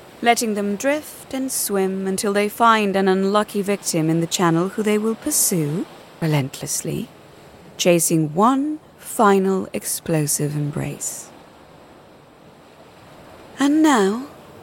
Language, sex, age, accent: English, female, 30-49, British